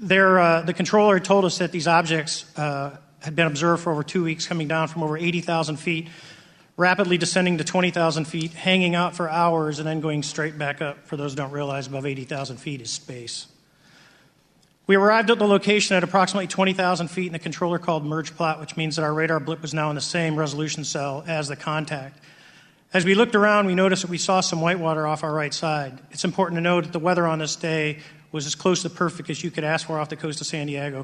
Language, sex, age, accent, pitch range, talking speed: English, male, 40-59, American, 155-180 Hz, 235 wpm